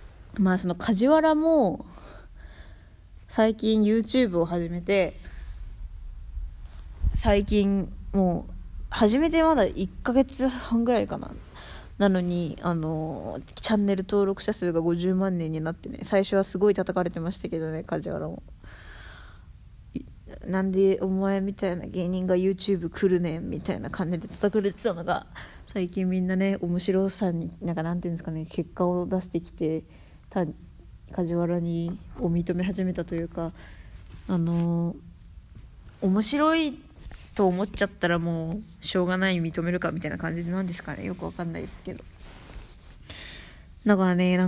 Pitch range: 155-195 Hz